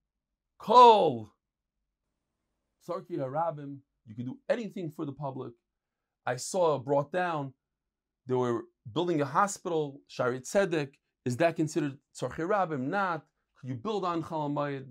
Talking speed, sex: 115 wpm, male